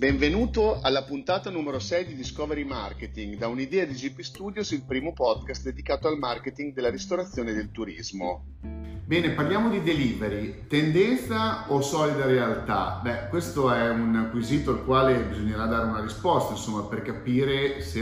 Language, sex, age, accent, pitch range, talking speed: Italian, male, 40-59, native, 105-135 Hz, 155 wpm